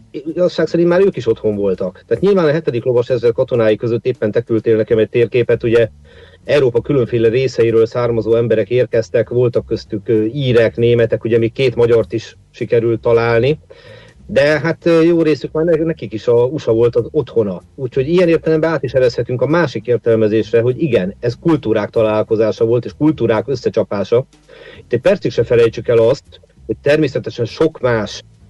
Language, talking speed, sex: Hungarian, 165 wpm, male